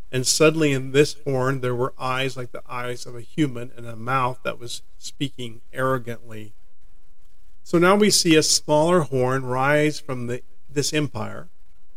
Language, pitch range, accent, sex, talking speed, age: English, 120-140 Hz, American, male, 165 wpm, 40-59